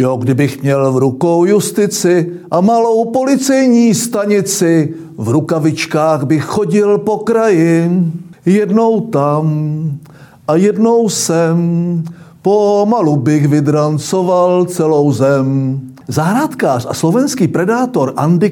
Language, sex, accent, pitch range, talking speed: Czech, male, native, 150-215 Hz, 100 wpm